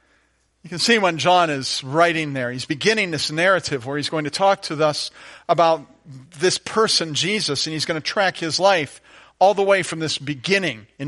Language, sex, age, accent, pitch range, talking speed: English, male, 50-69, American, 140-185 Hz, 200 wpm